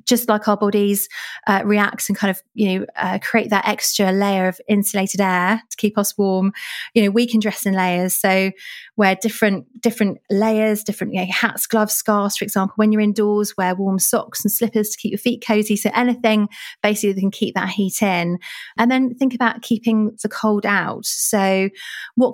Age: 30-49